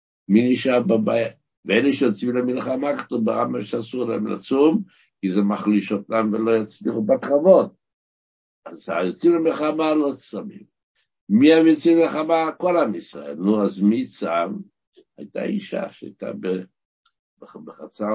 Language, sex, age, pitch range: Hebrew, male, 60-79, 95-125 Hz